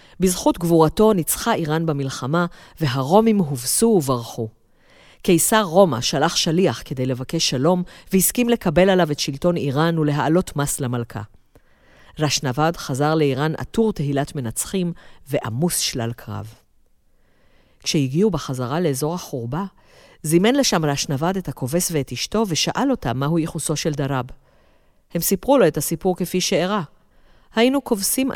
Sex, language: female, Hebrew